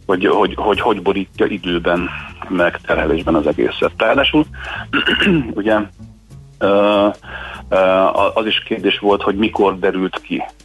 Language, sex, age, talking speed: Hungarian, male, 30-49, 115 wpm